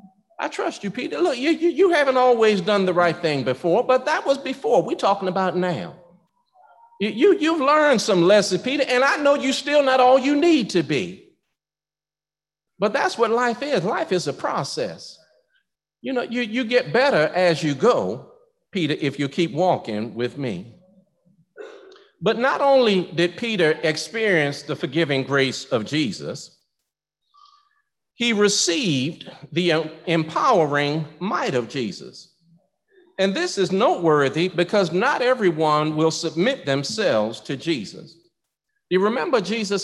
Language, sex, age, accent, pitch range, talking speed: English, male, 50-69, American, 155-240 Hz, 145 wpm